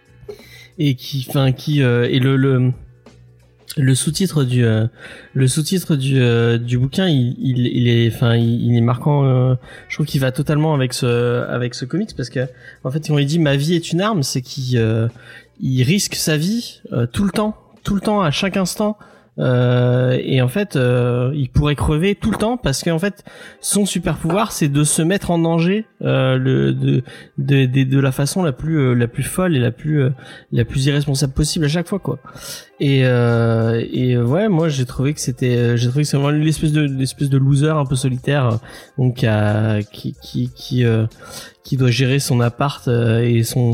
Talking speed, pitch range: 210 wpm, 120-150 Hz